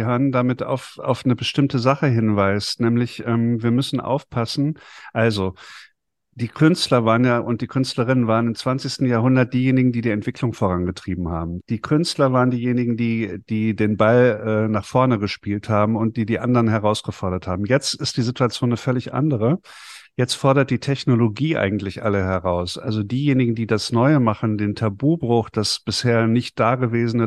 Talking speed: 165 wpm